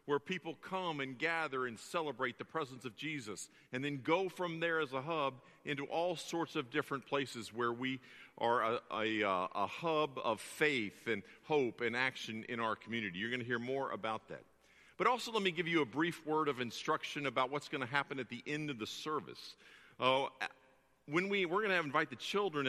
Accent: American